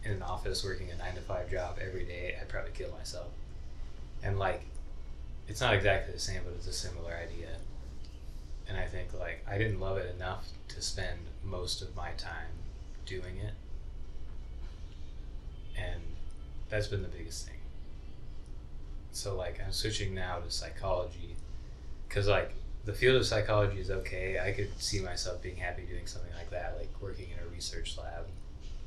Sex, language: male, English